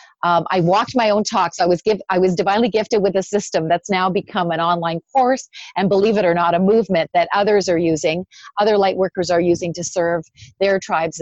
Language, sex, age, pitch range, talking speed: English, female, 40-59, 170-205 Hz, 225 wpm